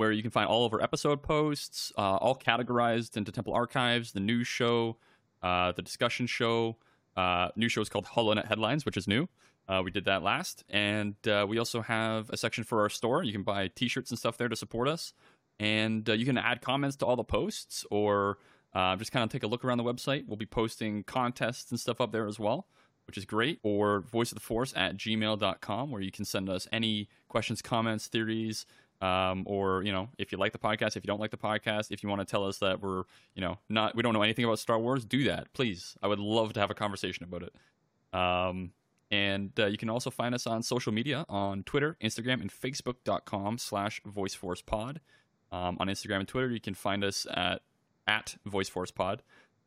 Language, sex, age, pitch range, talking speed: English, male, 30-49, 100-120 Hz, 215 wpm